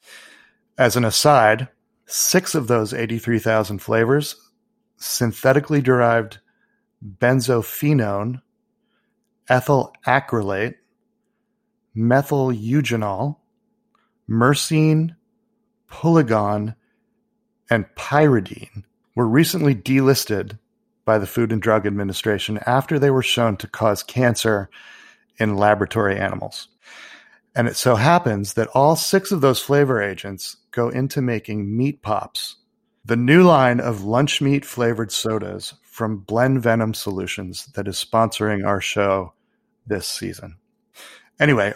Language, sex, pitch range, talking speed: English, male, 110-155 Hz, 105 wpm